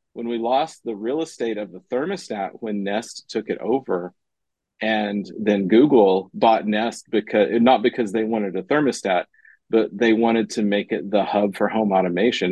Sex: male